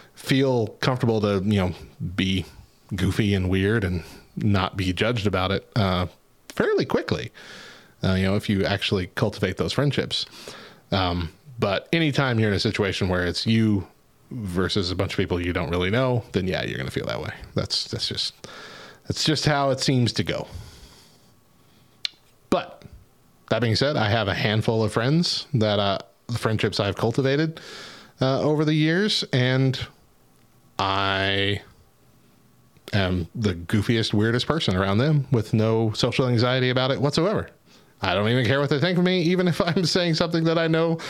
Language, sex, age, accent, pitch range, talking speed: English, male, 30-49, American, 100-130 Hz, 170 wpm